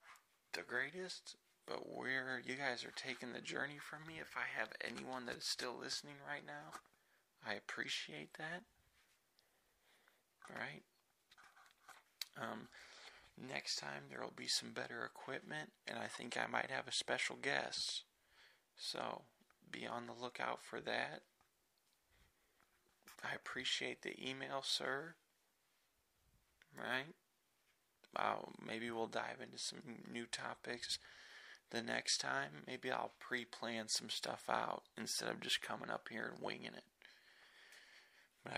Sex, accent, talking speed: male, American, 135 wpm